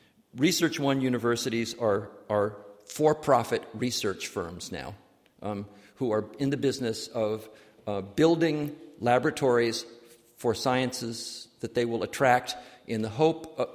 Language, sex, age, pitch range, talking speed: English, male, 50-69, 115-145 Hz, 125 wpm